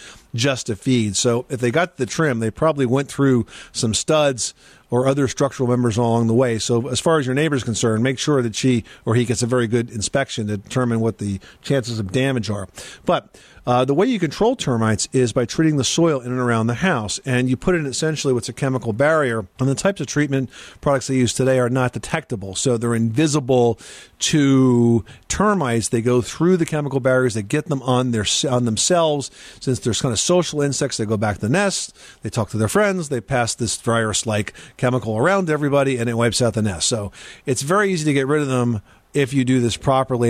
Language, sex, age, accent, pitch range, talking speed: English, male, 50-69, American, 115-140 Hz, 220 wpm